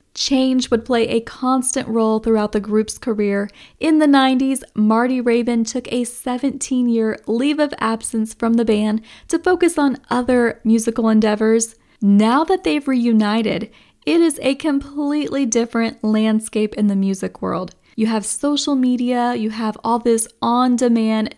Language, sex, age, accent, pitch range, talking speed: English, female, 10-29, American, 215-255 Hz, 145 wpm